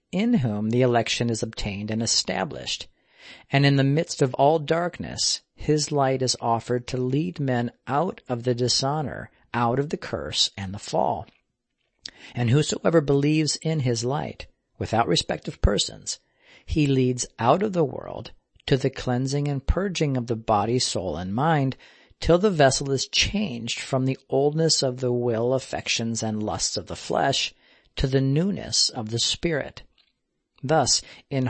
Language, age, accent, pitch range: English, 50-69, American, 120-145 Hz